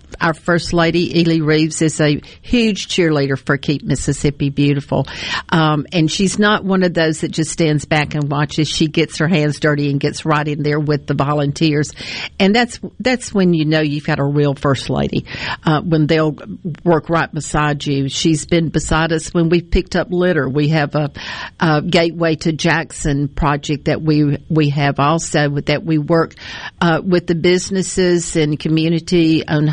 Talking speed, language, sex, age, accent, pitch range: 185 wpm, English, female, 50-69, American, 150-175 Hz